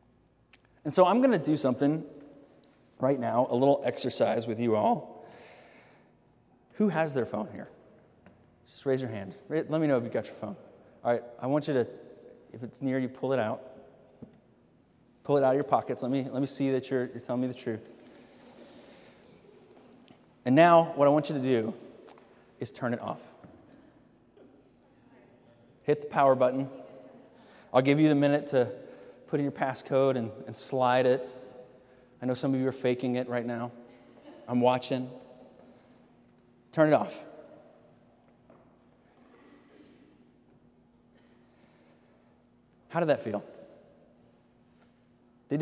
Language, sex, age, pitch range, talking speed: English, male, 30-49, 125-175 Hz, 150 wpm